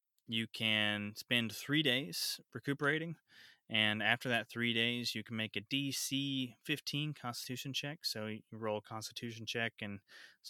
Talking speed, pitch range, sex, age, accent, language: 155 wpm, 105-120 Hz, male, 20-39, American, English